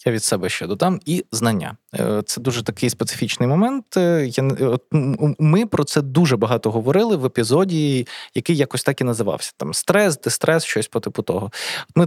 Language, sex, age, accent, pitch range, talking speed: Ukrainian, male, 20-39, native, 120-175 Hz, 165 wpm